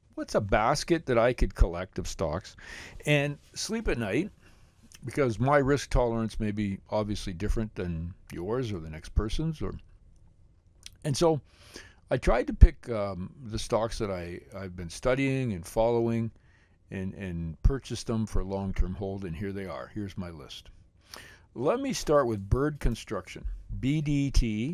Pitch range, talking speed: 95-125 Hz, 160 wpm